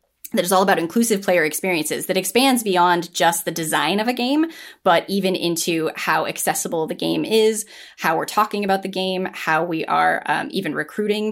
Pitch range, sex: 175-210 Hz, female